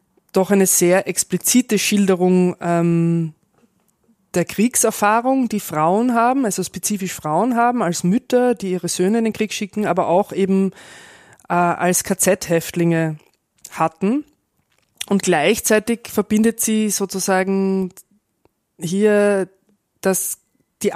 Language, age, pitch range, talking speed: German, 20-39, 170-205 Hz, 110 wpm